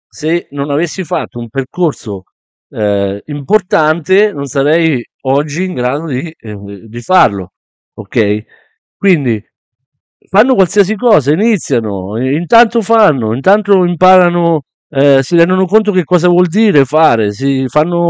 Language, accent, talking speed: Italian, native, 125 wpm